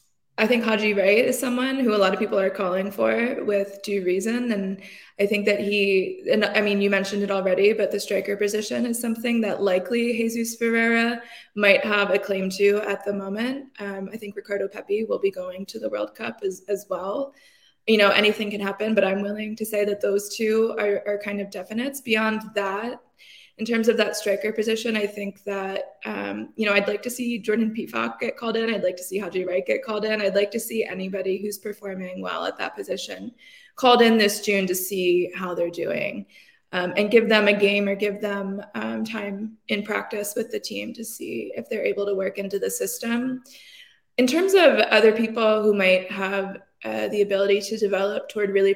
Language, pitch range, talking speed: English, 195-220 Hz, 215 wpm